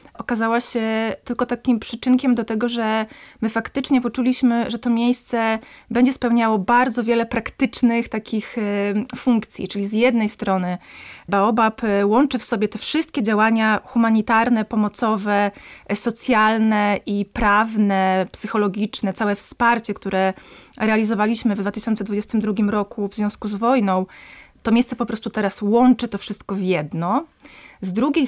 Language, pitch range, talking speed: Polish, 205-240 Hz, 130 wpm